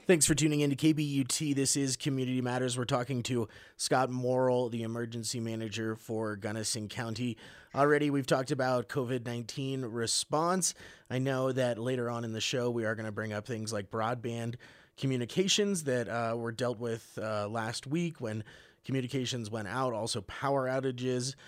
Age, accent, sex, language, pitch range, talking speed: 30-49, American, male, English, 115-140 Hz, 170 wpm